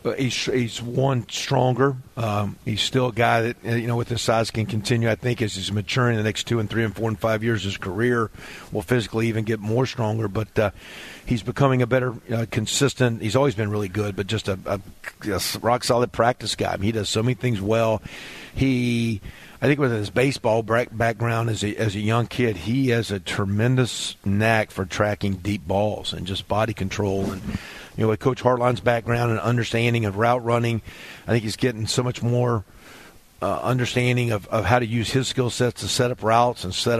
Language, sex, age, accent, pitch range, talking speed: English, male, 50-69, American, 105-125 Hz, 215 wpm